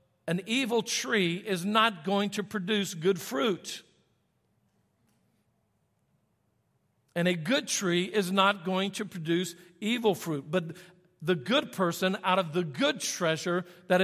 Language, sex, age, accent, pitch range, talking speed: English, male, 50-69, American, 175-215 Hz, 135 wpm